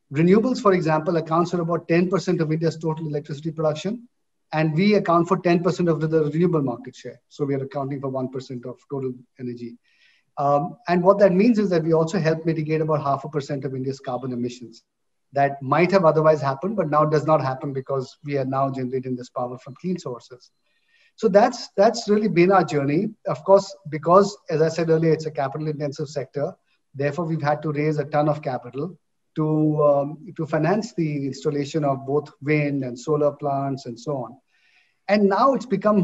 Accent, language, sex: Indian, English, male